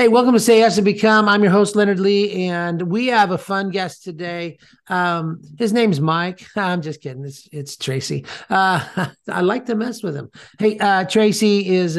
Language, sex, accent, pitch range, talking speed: English, male, American, 150-185 Hz, 200 wpm